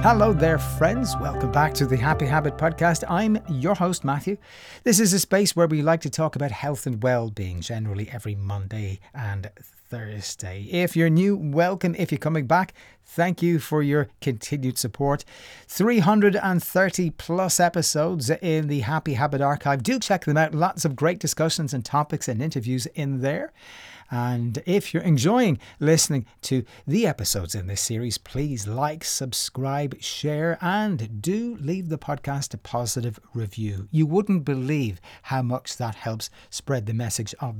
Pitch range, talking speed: 115-165 Hz, 165 wpm